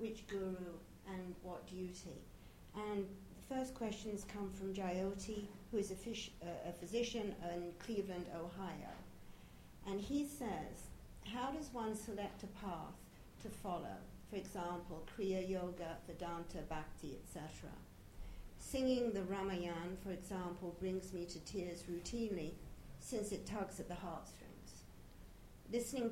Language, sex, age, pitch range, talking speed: English, female, 60-79, 170-205 Hz, 130 wpm